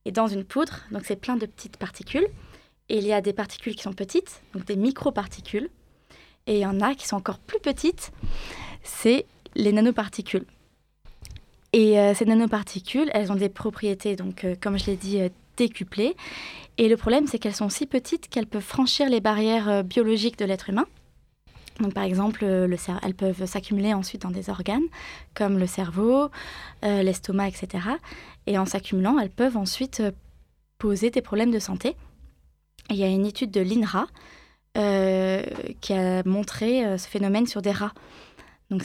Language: French